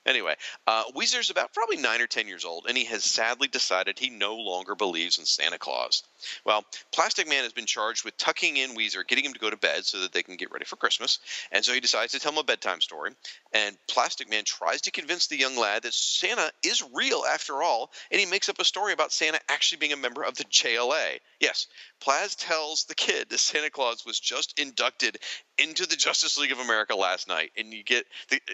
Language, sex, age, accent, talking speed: English, male, 40-59, American, 230 wpm